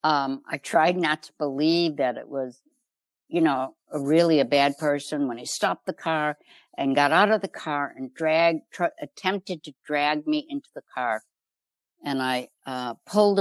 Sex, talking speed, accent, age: female, 180 wpm, American, 60-79